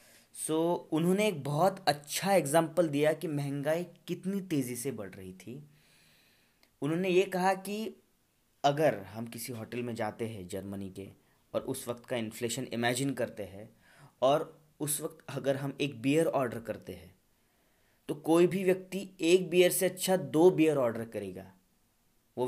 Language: Hindi